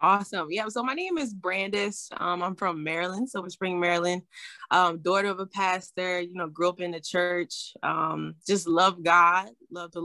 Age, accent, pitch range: 20-39, American, 170-200 Hz